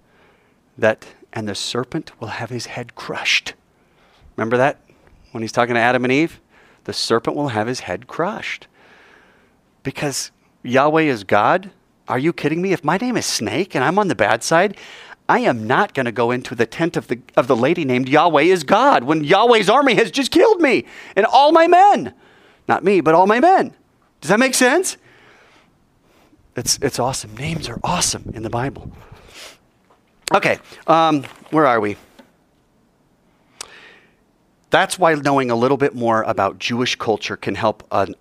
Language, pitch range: English, 110-160 Hz